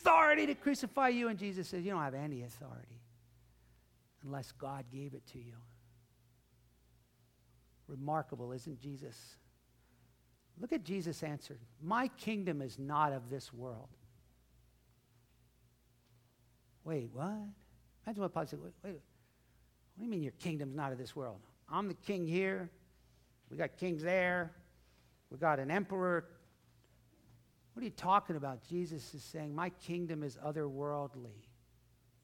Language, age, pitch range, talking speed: English, 60-79, 120-195 Hz, 140 wpm